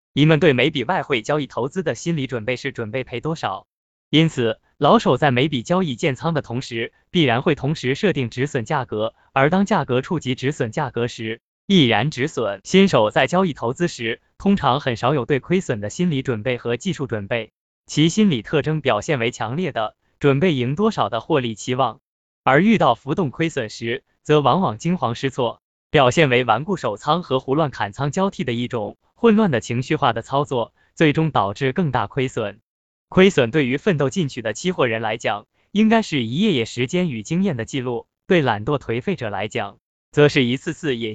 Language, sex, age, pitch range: Chinese, male, 20-39, 120-165 Hz